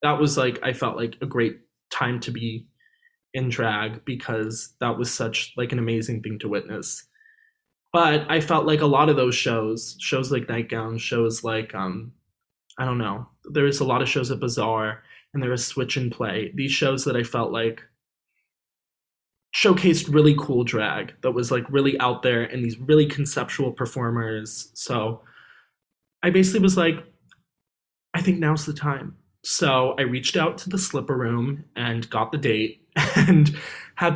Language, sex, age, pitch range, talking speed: English, male, 20-39, 120-150 Hz, 175 wpm